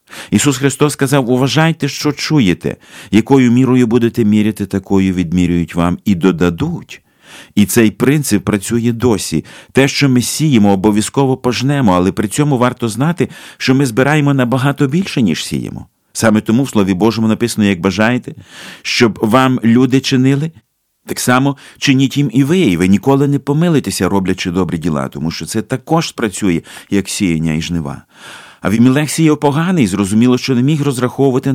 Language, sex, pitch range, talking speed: Ukrainian, male, 100-130 Hz, 155 wpm